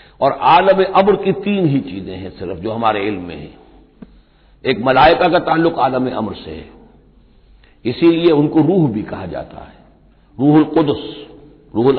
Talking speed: 160 wpm